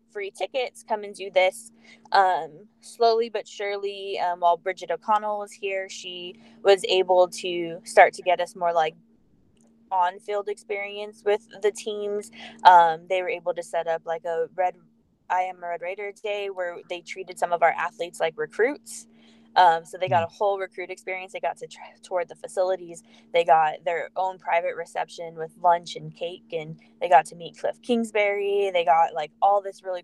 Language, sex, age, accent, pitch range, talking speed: English, female, 10-29, American, 165-215 Hz, 190 wpm